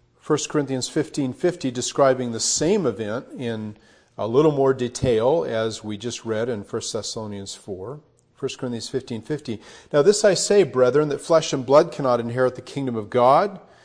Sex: male